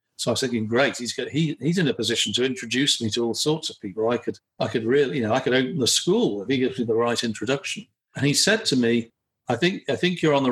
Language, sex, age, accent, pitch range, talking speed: English, male, 50-69, British, 115-145 Hz, 260 wpm